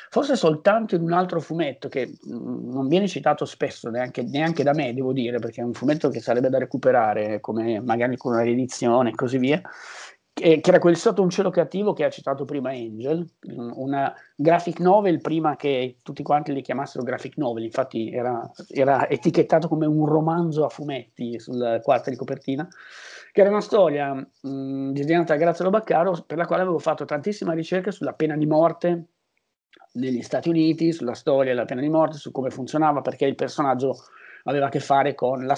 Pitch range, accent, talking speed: 125-160 Hz, native, 185 wpm